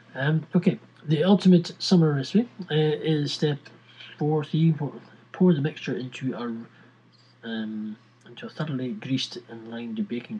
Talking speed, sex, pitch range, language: 135 wpm, male, 120-190 Hz, English